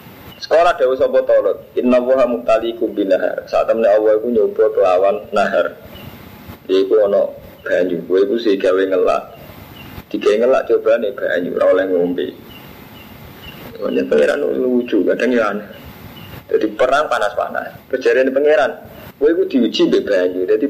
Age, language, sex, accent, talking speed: 30-49, Indonesian, male, native, 135 wpm